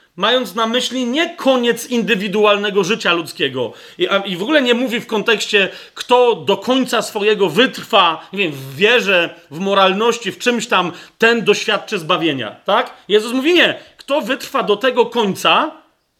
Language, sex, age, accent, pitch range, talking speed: Polish, male, 40-59, native, 205-255 Hz, 155 wpm